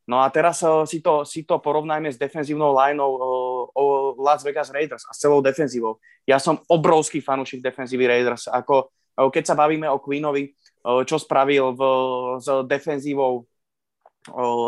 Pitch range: 130-145 Hz